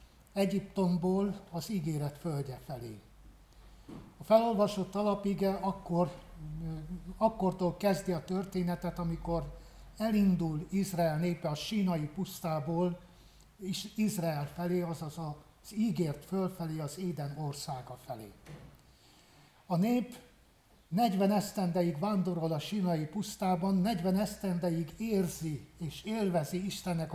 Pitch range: 165-195 Hz